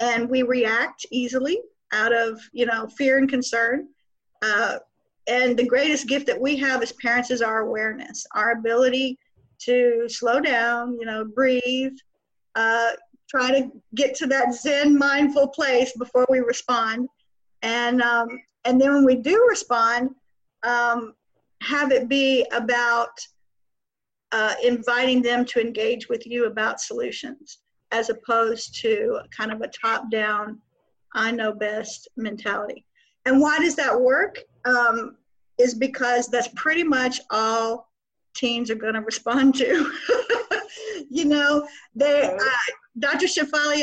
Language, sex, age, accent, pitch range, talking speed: English, female, 50-69, American, 235-280 Hz, 135 wpm